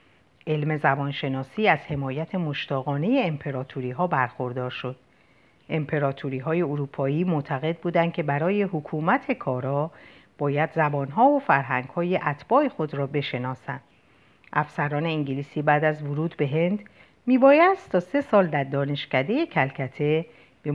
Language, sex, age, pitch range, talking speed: Persian, female, 50-69, 135-175 Hz, 125 wpm